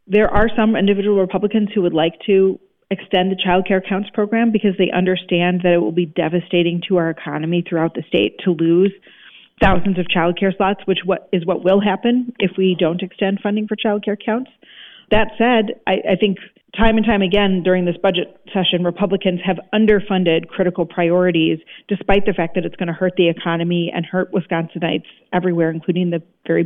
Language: English